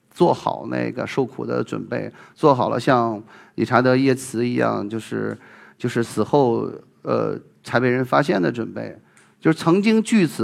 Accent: native